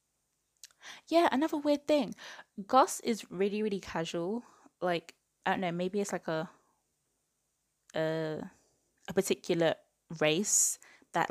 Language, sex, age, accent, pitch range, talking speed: English, female, 20-39, British, 170-200 Hz, 115 wpm